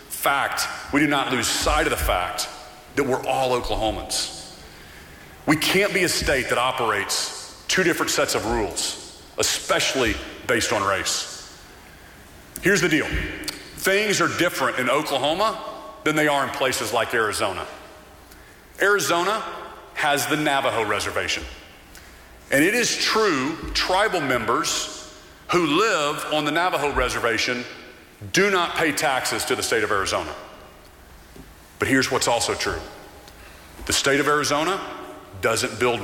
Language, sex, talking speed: English, male, 135 wpm